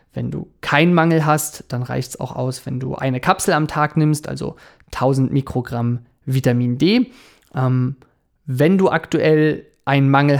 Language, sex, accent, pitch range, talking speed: German, male, German, 125-145 Hz, 160 wpm